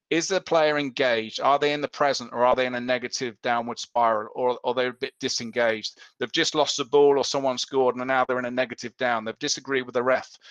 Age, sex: 40-59, male